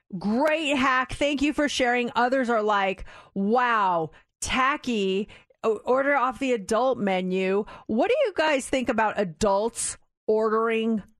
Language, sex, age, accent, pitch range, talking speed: English, female, 40-59, American, 210-285 Hz, 135 wpm